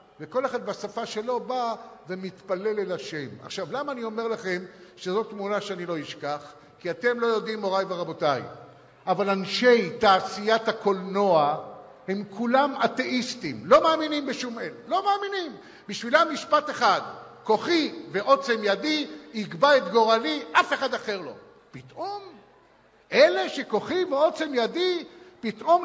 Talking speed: 130 wpm